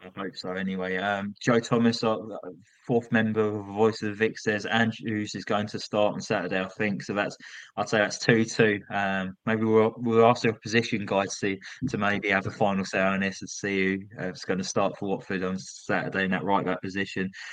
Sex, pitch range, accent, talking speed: male, 100-120 Hz, British, 235 wpm